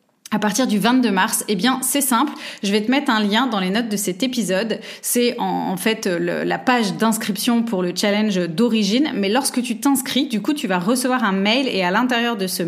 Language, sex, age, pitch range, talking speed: French, female, 20-39, 205-255 Hz, 225 wpm